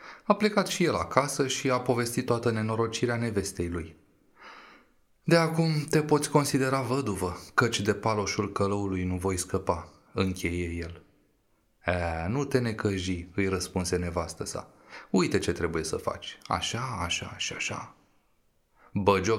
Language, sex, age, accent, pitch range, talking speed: Romanian, male, 30-49, native, 90-125 Hz, 135 wpm